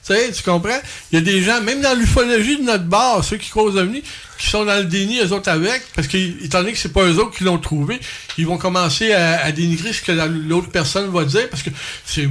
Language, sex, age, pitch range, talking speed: French, male, 60-79, 170-225 Hz, 270 wpm